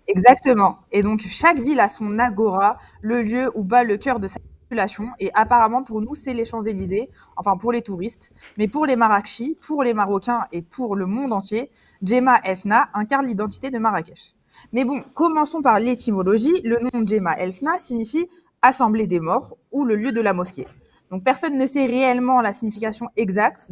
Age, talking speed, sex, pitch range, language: 20-39, 190 wpm, female, 195-245 Hz, French